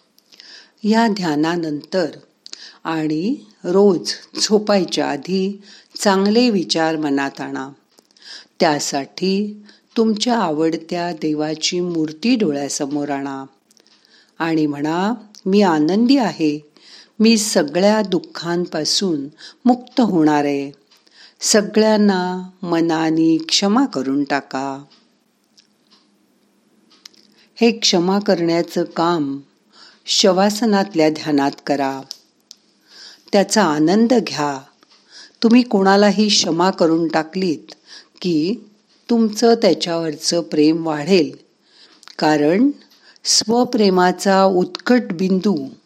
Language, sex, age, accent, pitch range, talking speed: Marathi, female, 50-69, native, 155-210 Hz, 75 wpm